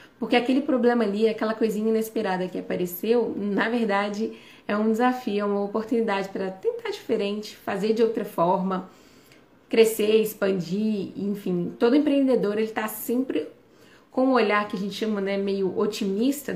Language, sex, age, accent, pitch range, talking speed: Portuguese, female, 20-39, Brazilian, 195-240 Hz, 150 wpm